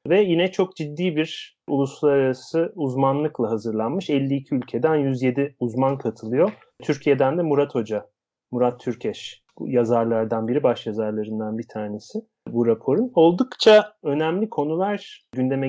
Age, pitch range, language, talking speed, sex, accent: 30-49, 120-155 Hz, Turkish, 120 wpm, male, native